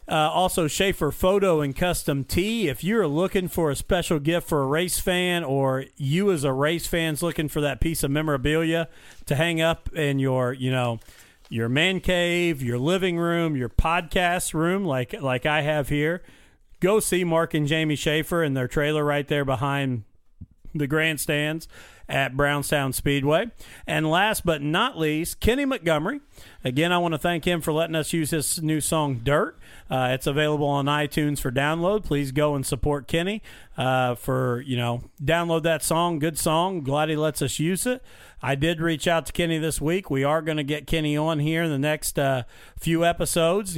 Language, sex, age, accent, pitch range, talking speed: English, male, 40-59, American, 140-170 Hz, 190 wpm